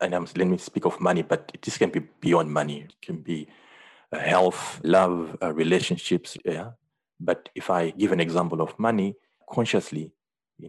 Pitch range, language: 80-95 Hz, English